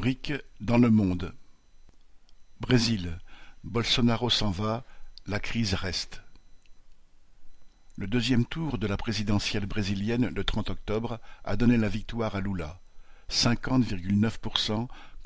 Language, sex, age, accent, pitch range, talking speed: French, male, 60-79, French, 100-115 Hz, 105 wpm